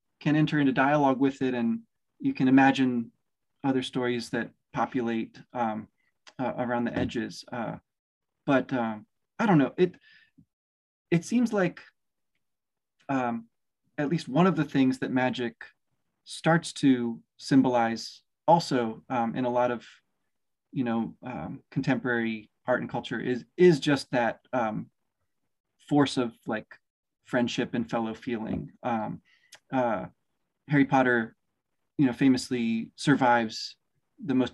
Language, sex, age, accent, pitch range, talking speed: English, male, 30-49, American, 120-145 Hz, 130 wpm